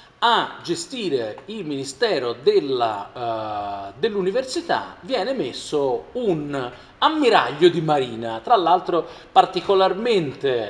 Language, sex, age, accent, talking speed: Italian, male, 40-59, native, 90 wpm